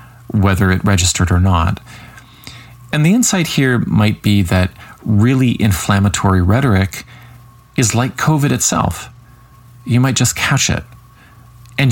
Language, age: English, 40-59